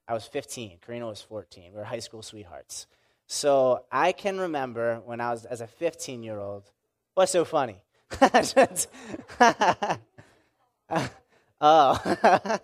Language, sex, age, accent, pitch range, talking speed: English, male, 20-39, American, 115-160 Hz, 130 wpm